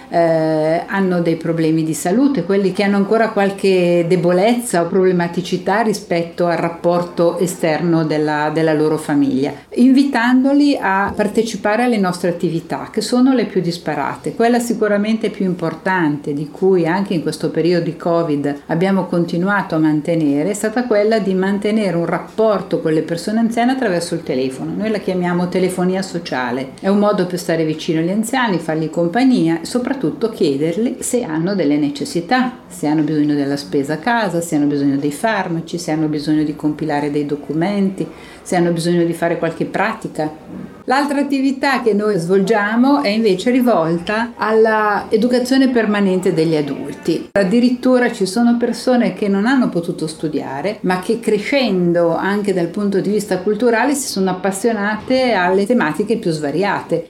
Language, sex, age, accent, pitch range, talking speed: Italian, female, 50-69, native, 165-220 Hz, 155 wpm